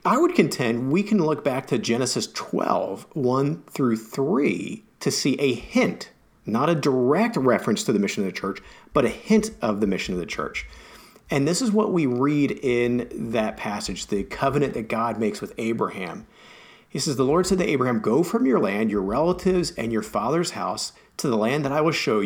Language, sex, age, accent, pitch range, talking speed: English, male, 40-59, American, 115-155 Hz, 205 wpm